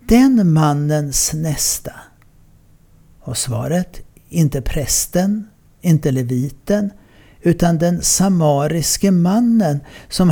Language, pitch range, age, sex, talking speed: Swedish, 135-175 Hz, 60-79, male, 80 wpm